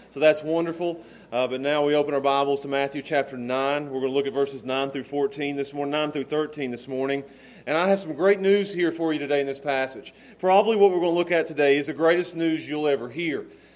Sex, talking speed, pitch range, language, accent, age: male, 255 wpm, 145-195 Hz, English, American, 40-59